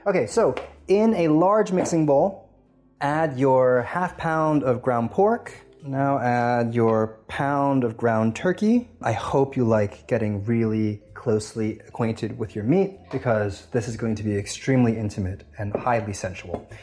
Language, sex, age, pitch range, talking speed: English, male, 20-39, 110-155 Hz, 155 wpm